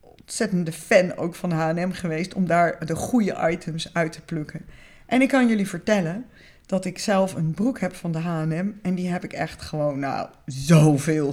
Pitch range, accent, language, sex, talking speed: 155-230 Hz, Dutch, Dutch, female, 195 wpm